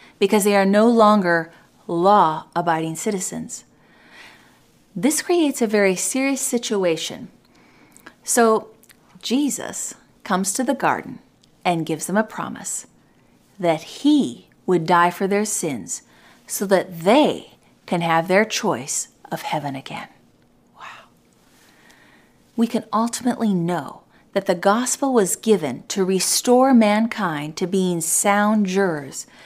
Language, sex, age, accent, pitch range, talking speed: English, female, 40-59, American, 175-235 Hz, 120 wpm